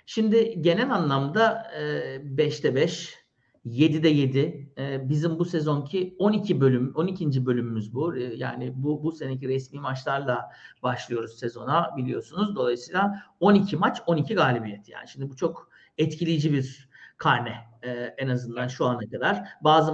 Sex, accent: male, native